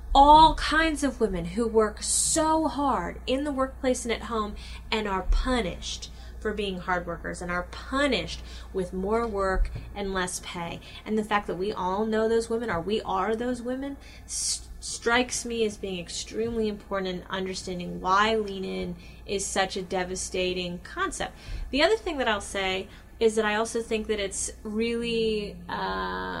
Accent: American